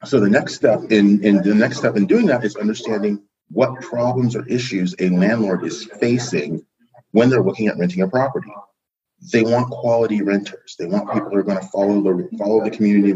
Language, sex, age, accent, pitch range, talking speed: English, male, 40-59, American, 100-130 Hz, 205 wpm